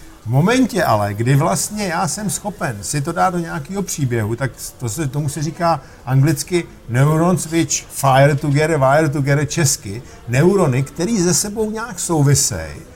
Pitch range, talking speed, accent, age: 135-170 Hz, 155 wpm, native, 50-69